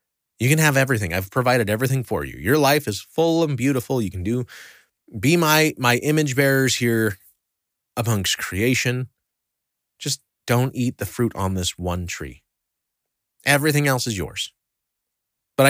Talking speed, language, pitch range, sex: 155 wpm, English, 95-135 Hz, male